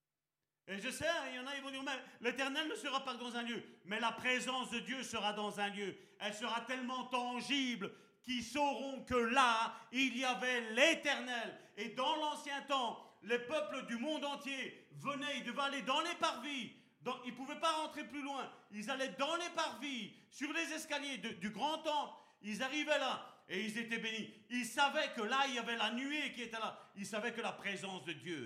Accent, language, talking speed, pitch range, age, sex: French, French, 210 wpm, 215-270 Hz, 40-59, male